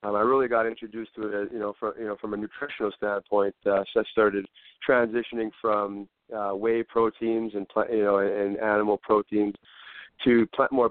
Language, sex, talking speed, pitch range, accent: English, male, 200 wpm, 100-115 Hz, American